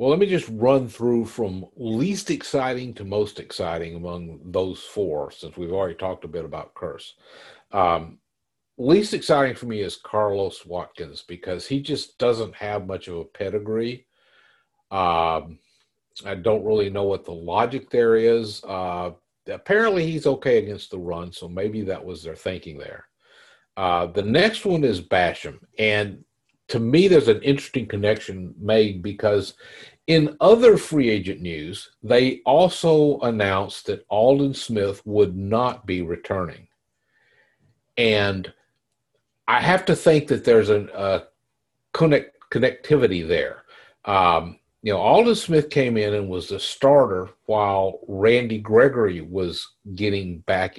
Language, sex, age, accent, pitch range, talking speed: English, male, 50-69, American, 95-130 Hz, 145 wpm